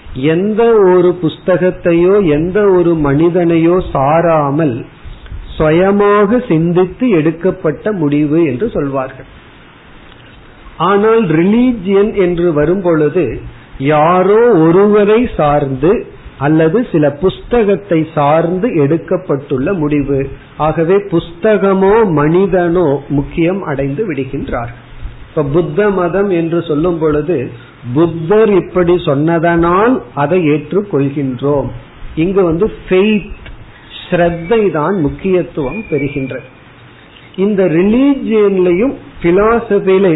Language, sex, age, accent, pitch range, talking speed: Tamil, male, 50-69, native, 145-190 Hz, 50 wpm